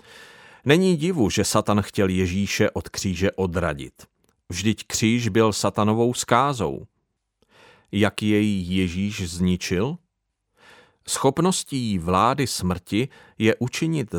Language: Czech